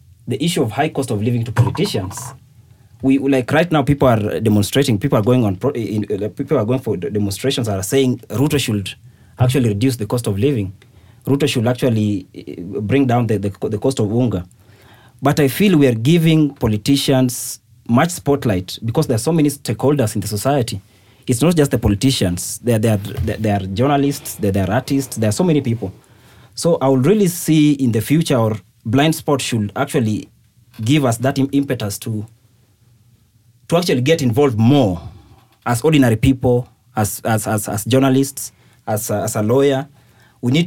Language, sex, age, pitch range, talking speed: English, male, 30-49, 110-135 Hz, 185 wpm